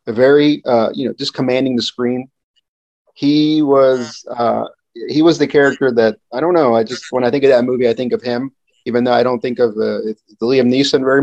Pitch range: 120-155 Hz